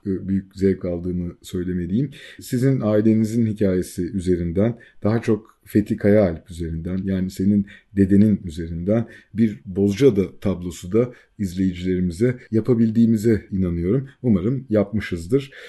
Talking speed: 105 wpm